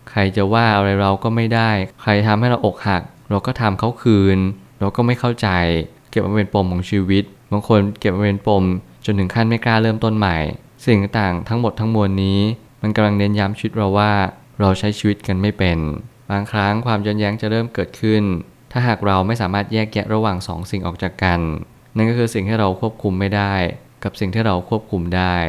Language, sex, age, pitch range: Thai, male, 20-39, 95-110 Hz